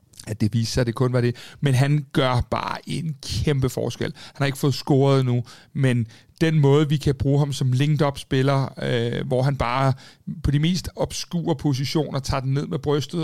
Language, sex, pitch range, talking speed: Danish, male, 125-150 Hz, 205 wpm